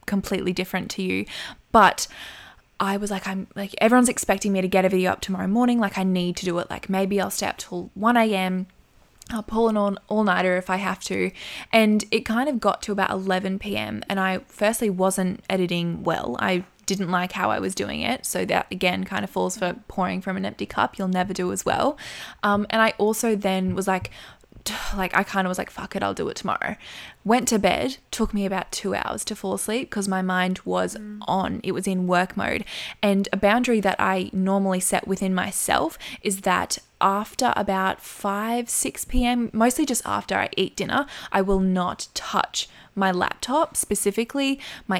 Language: English